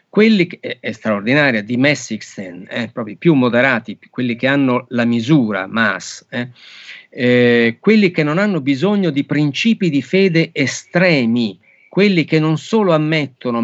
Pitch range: 125-165 Hz